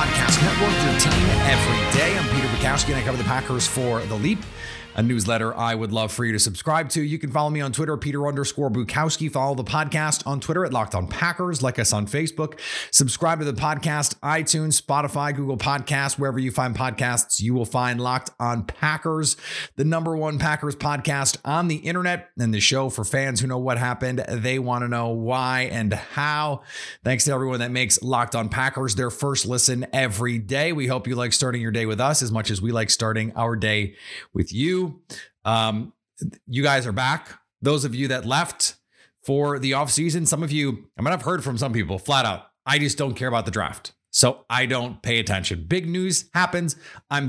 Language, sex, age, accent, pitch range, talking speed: English, male, 30-49, American, 120-150 Hz, 210 wpm